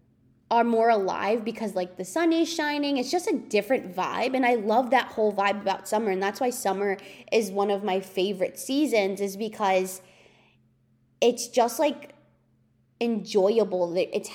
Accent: American